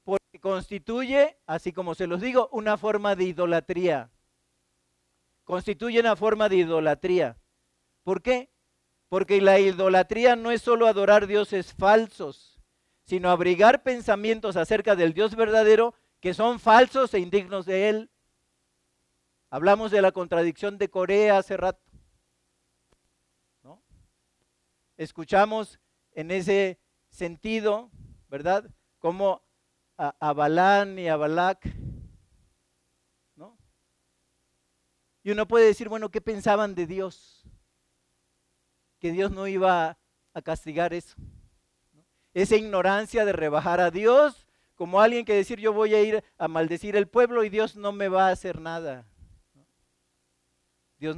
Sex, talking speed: male, 120 wpm